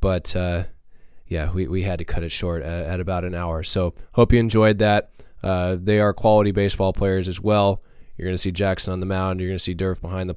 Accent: American